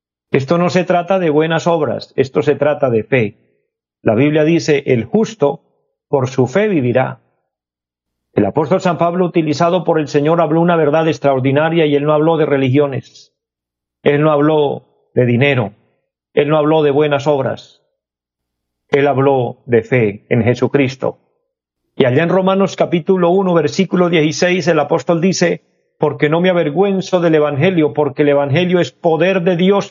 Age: 50-69